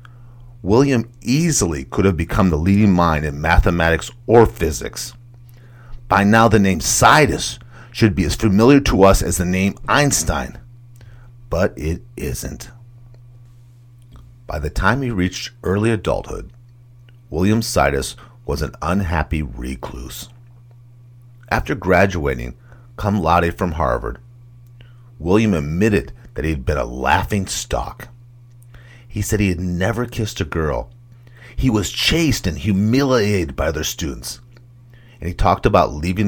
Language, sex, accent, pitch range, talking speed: English, male, American, 85-120 Hz, 130 wpm